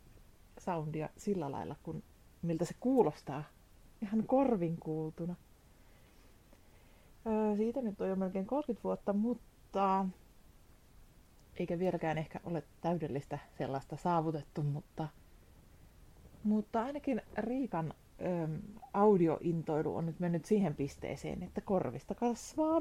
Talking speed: 105 wpm